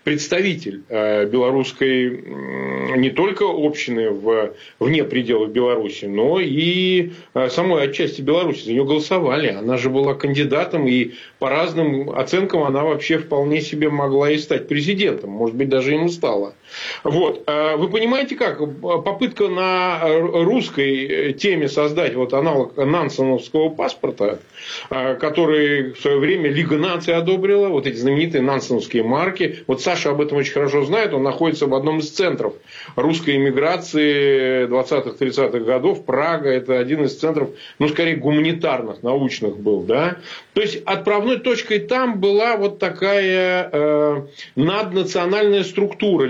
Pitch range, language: 135-180 Hz, Russian